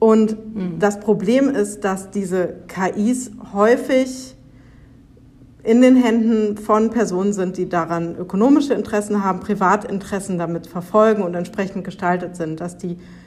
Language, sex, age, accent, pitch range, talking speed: German, female, 50-69, German, 190-225 Hz, 125 wpm